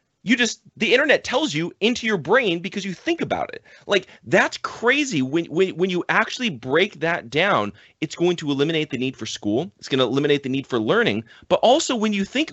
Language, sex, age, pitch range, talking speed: English, male, 30-49, 145-215 Hz, 220 wpm